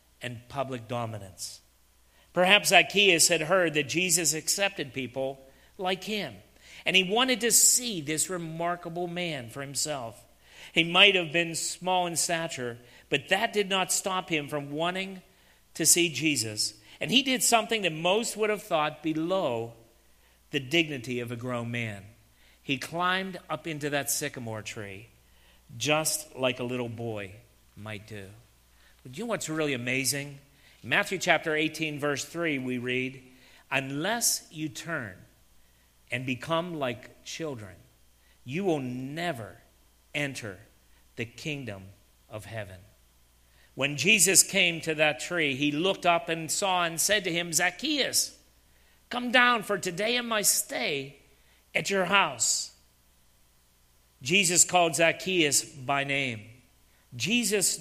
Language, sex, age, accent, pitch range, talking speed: English, male, 50-69, American, 110-175 Hz, 135 wpm